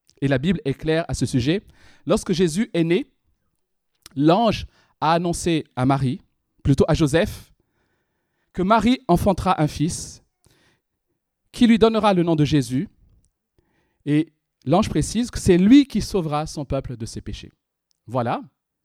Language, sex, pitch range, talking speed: French, male, 135-200 Hz, 145 wpm